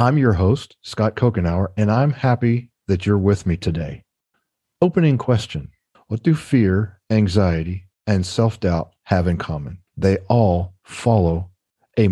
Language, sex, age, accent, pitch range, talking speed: English, male, 50-69, American, 95-120 Hz, 140 wpm